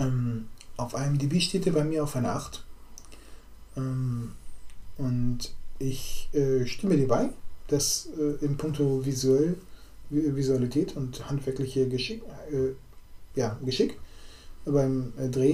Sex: male